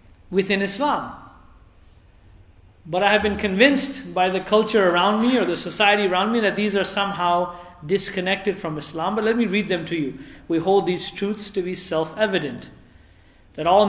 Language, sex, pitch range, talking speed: English, male, 160-210 Hz, 175 wpm